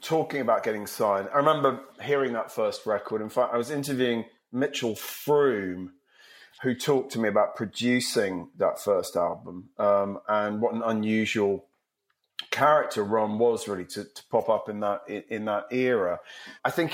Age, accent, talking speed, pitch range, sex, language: 30-49, British, 165 wpm, 110-145 Hz, male, English